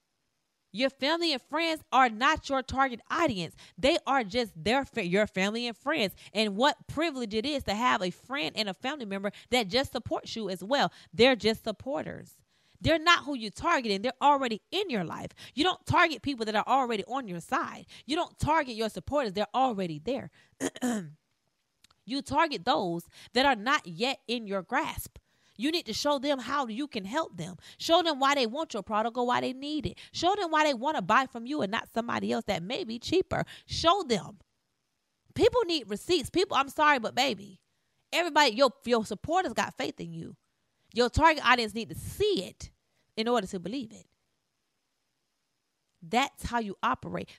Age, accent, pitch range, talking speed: 30-49, American, 215-300 Hz, 190 wpm